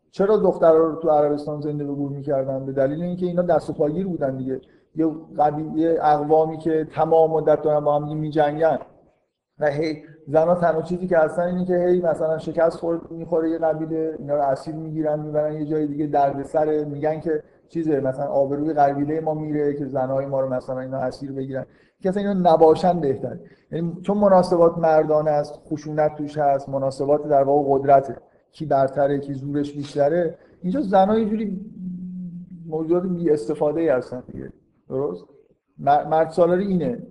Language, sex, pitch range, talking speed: Persian, male, 140-165 Hz, 160 wpm